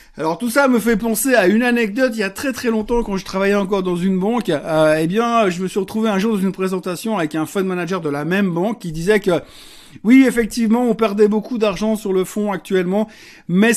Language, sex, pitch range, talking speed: French, male, 185-220 Hz, 245 wpm